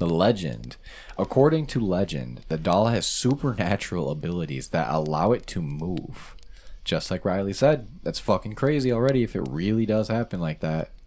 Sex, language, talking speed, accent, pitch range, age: male, English, 165 wpm, American, 80-115 Hz, 20-39